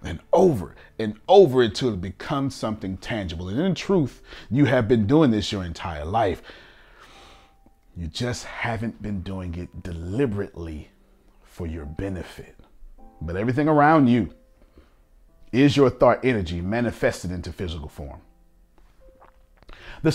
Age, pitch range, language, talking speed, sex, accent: 40-59, 95-145 Hz, English, 130 wpm, male, American